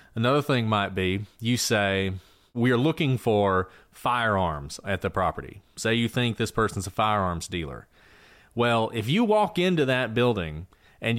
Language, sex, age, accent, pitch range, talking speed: English, male, 30-49, American, 100-130 Hz, 160 wpm